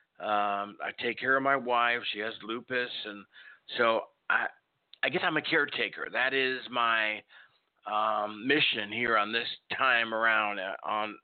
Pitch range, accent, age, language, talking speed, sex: 115-150 Hz, American, 50-69, English, 155 wpm, male